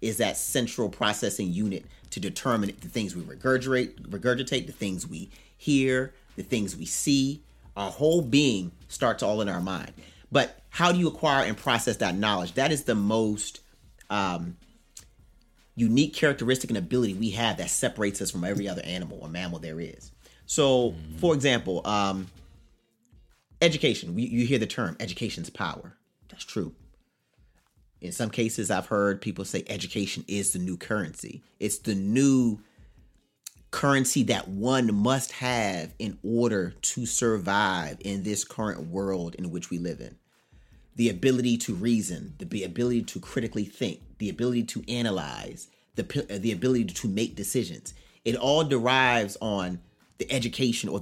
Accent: American